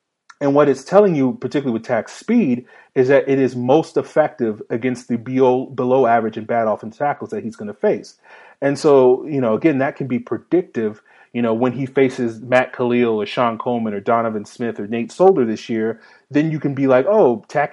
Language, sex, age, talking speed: English, male, 30-49, 215 wpm